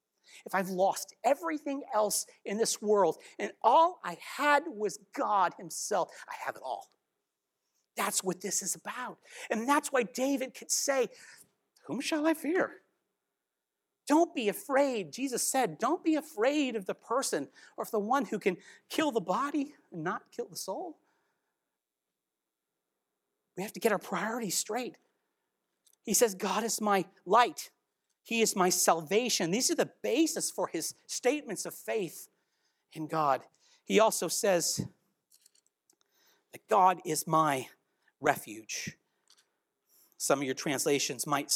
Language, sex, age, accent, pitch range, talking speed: English, male, 40-59, American, 195-290 Hz, 145 wpm